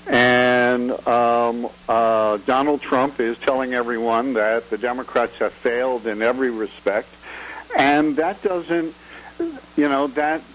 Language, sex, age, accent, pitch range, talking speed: English, male, 60-79, American, 125-150 Hz, 125 wpm